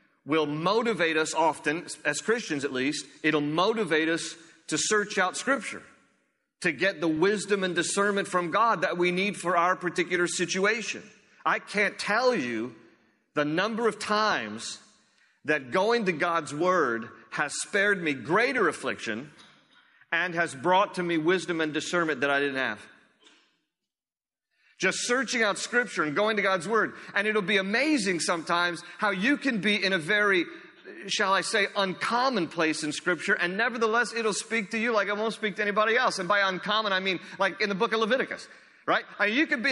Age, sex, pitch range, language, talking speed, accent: 40-59, male, 175-225 Hz, English, 175 wpm, American